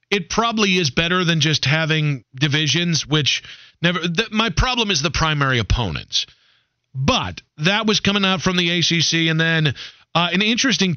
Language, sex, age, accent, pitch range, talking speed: English, male, 40-59, American, 130-180 Hz, 165 wpm